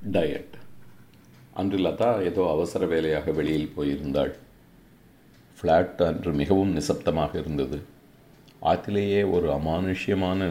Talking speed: 90 wpm